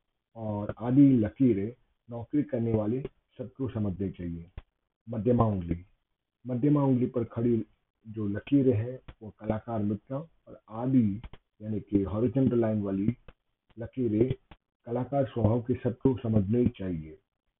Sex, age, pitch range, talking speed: male, 50-69, 105-125 Hz, 100 wpm